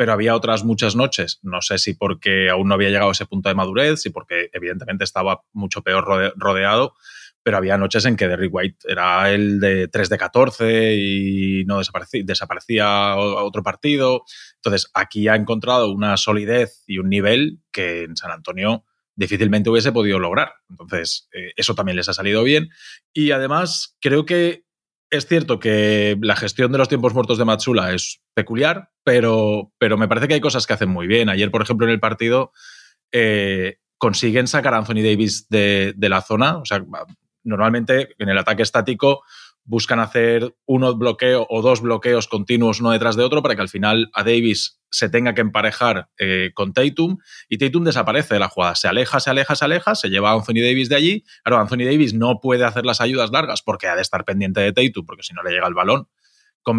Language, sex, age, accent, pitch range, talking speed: Spanish, male, 20-39, Spanish, 100-130 Hz, 200 wpm